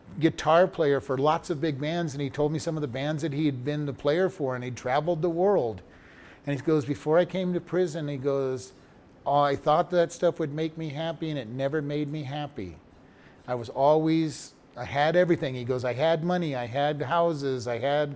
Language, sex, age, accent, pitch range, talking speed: English, male, 40-59, American, 135-160 Hz, 225 wpm